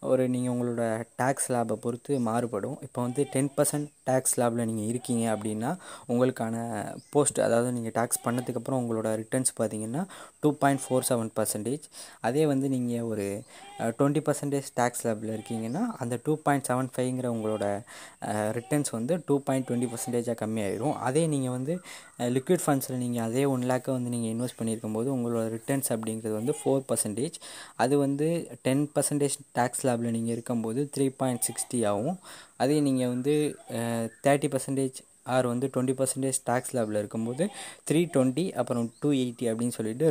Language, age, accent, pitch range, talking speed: Tamil, 20-39, native, 115-135 Hz, 140 wpm